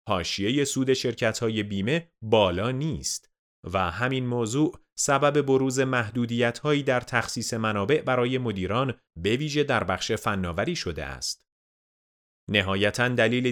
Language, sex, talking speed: Persian, male, 115 wpm